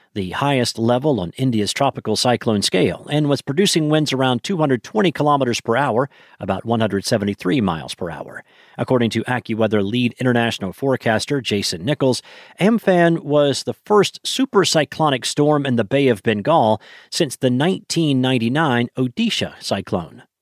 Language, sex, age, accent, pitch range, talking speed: English, male, 40-59, American, 115-150 Hz, 140 wpm